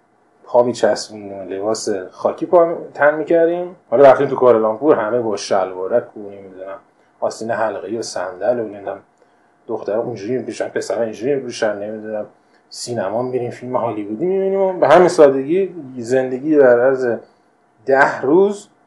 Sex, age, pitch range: male, 30-49, 105-145 Hz